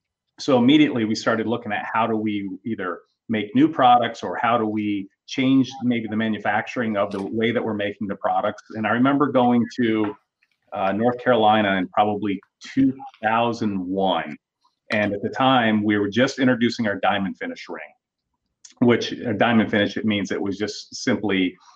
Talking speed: 170 wpm